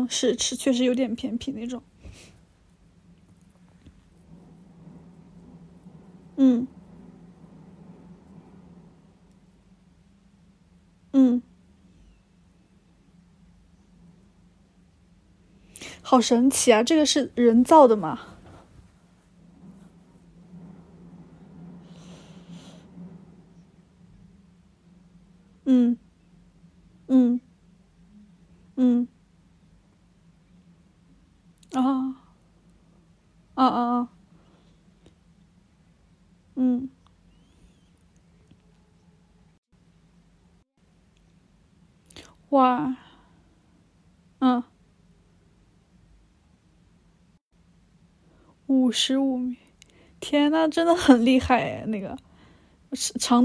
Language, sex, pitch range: Chinese, female, 180-255 Hz